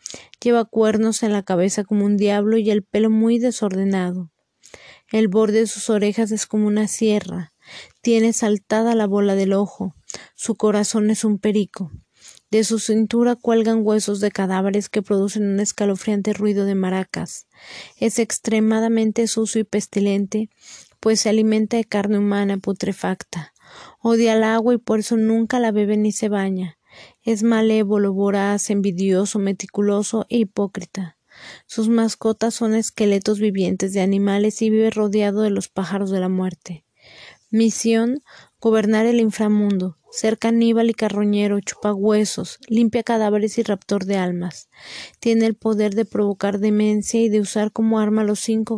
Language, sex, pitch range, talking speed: Spanish, female, 200-225 Hz, 150 wpm